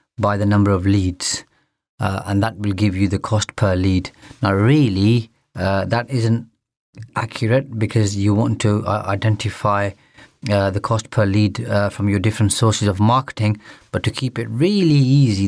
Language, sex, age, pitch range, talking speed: English, male, 30-49, 100-125 Hz, 175 wpm